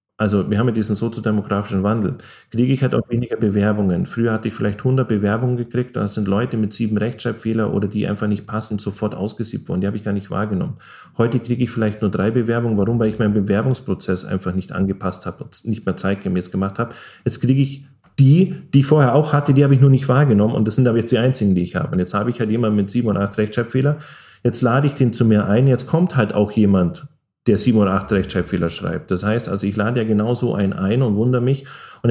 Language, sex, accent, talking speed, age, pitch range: German, male, German, 245 wpm, 40-59, 100-125 Hz